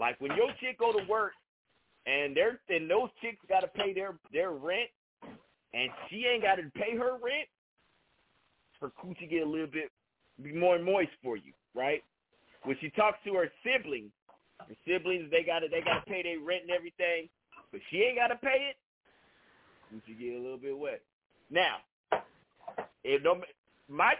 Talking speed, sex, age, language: 170 wpm, male, 40-59, English